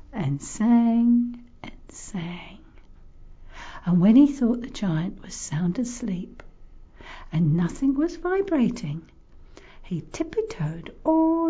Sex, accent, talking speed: female, British, 105 wpm